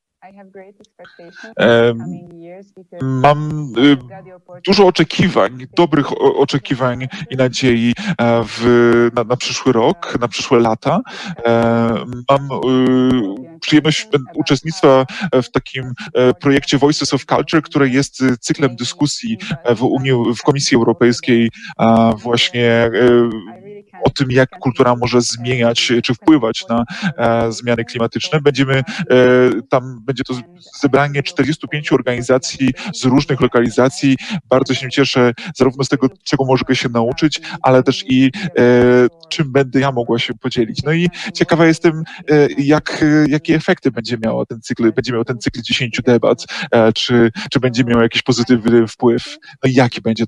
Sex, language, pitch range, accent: male, Polish, 120-150 Hz, native